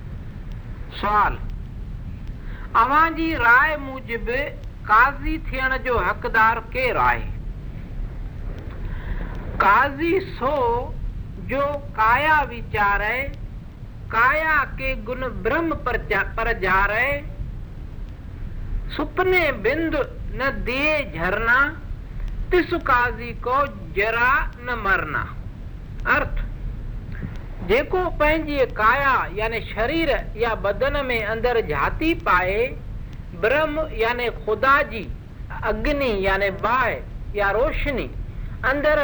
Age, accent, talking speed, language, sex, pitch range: 60-79, native, 35 wpm, Hindi, male, 235-320 Hz